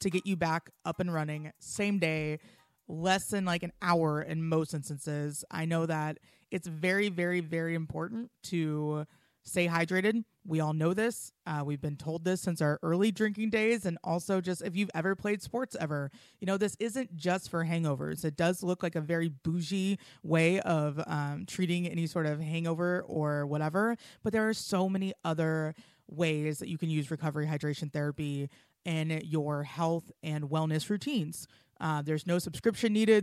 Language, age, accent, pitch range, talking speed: English, 20-39, American, 150-185 Hz, 180 wpm